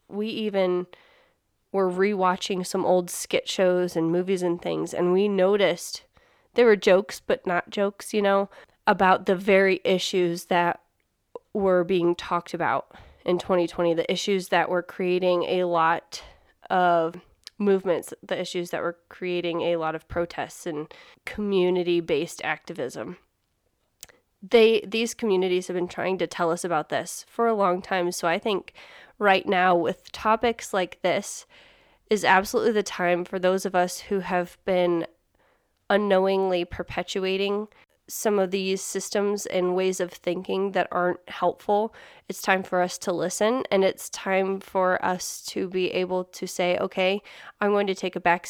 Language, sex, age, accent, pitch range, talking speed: English, female, 20-39, American, 180-200 Hz, 160 wpm